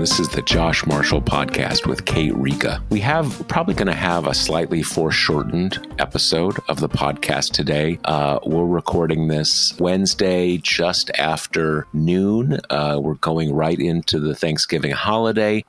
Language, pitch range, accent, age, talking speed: English, 80-95 Hz, American, 50-69, 155 wpm